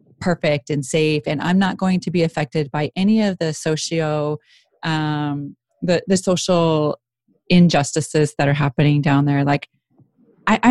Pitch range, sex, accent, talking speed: 150-185 Hz, female, American, 150 wpm